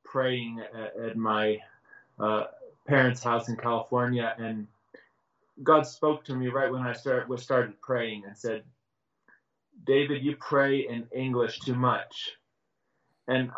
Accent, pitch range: American, 115-135 Hz